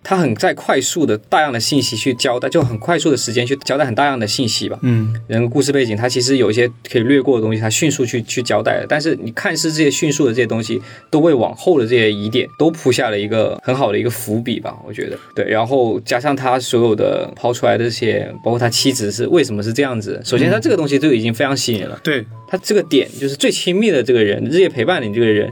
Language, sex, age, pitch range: Chinese, male, 20-39, 115-140 Hz